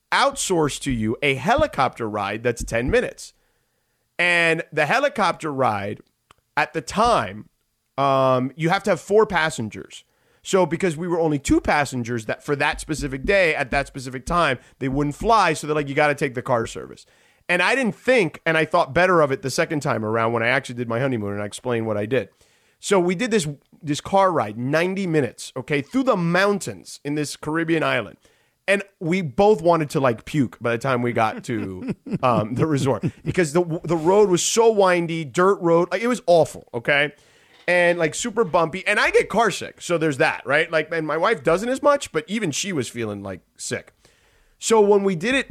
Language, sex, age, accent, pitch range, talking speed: English, male, 30-49, American, 130-185 Hz, 205 wpm